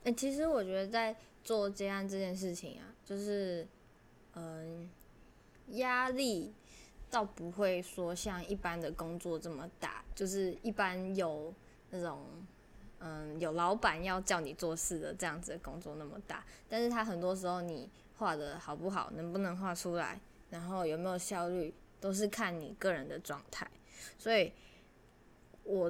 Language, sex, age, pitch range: Chinese, female, 10-29, 175-210 Hz